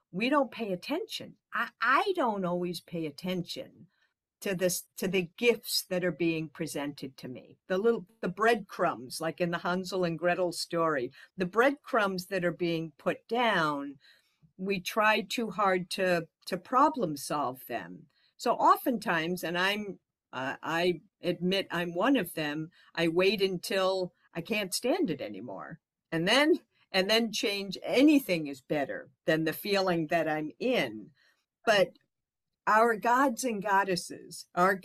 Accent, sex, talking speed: American, female, 150 wpm